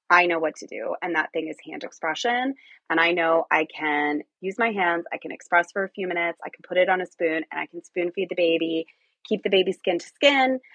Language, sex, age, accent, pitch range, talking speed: English, female, 20-39, American, 165-200 Hz, 240 wpm